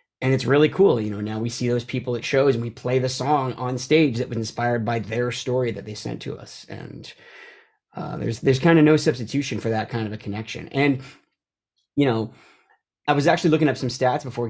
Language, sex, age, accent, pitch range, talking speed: English, male, 30-49, American, 115-150 Hz, 230 wpm